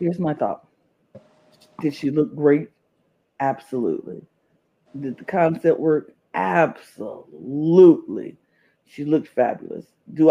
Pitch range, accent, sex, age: 145-200 Hz, American, female, 50-69